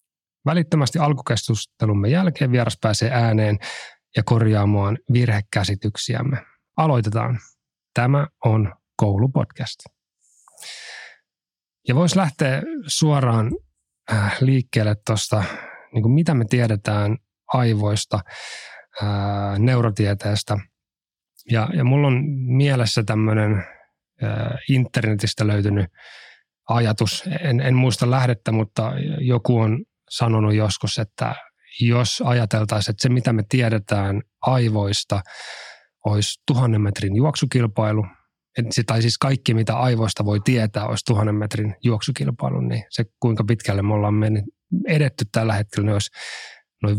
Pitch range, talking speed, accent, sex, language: 105-125 Hz, 100 wpm, native, male, Finnish